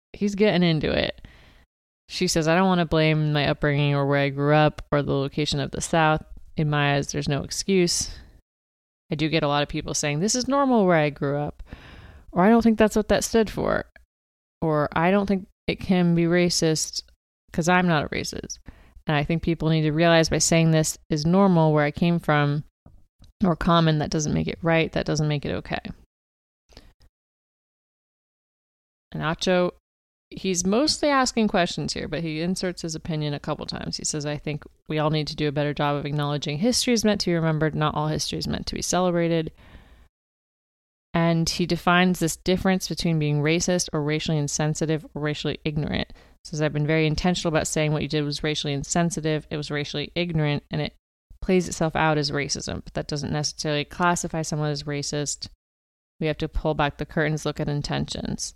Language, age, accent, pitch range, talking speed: English, 30-49, American, 145-170 Hz, 200 wpm